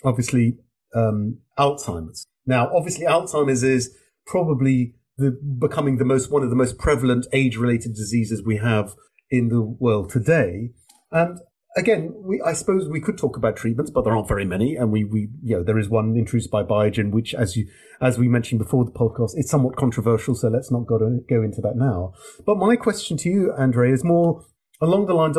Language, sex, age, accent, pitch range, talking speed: English, male, 40-59, British, 120-150 Hz, 200 wpm